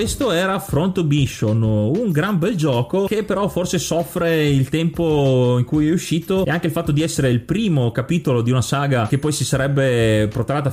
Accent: native